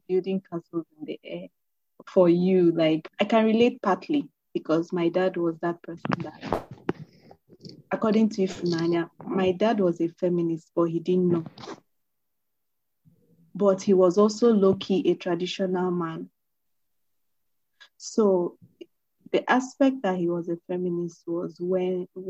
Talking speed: 130 wpm